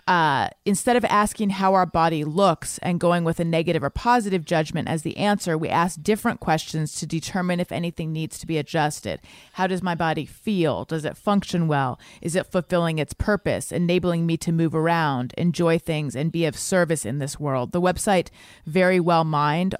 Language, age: English, 30-49